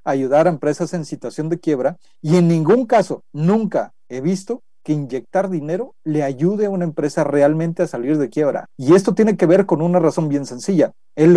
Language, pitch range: Spanish, 155-210 Hz